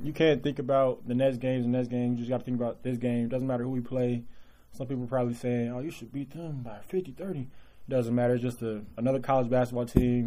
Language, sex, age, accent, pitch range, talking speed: English, male, 30-49, American, 130-195 Hz, 275 wpm